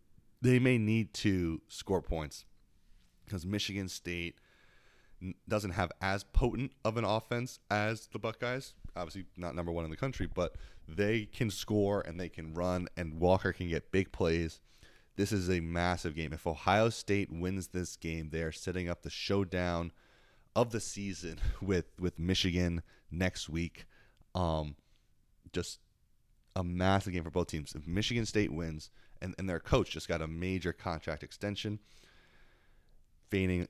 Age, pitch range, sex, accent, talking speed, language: 30-49, 85-100 Hz, male, American, 155 wpm, English